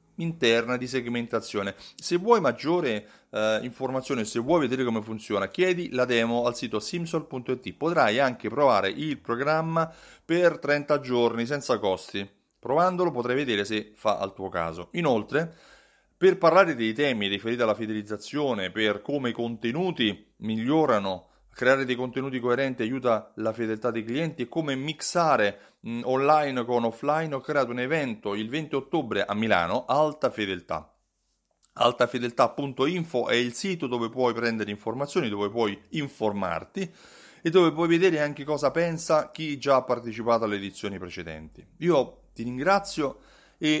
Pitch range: 110-150 Hz